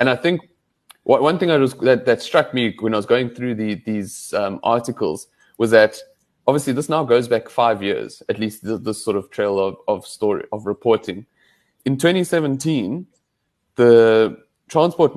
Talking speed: 180 wpm